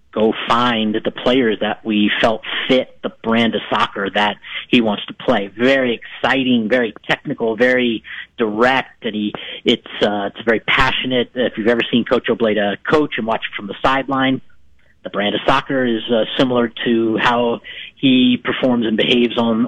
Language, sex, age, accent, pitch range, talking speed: English, male, 40-59, American, 115-145 Hz, 175 wpm